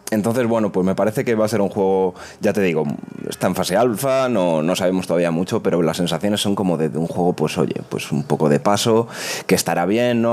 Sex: male